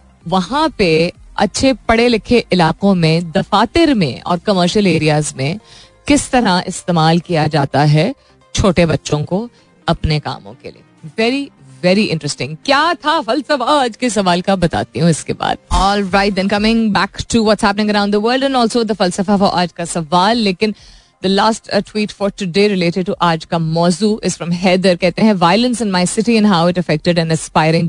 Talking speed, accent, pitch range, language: 120 wpm, native, 165-220 Hz, Hindi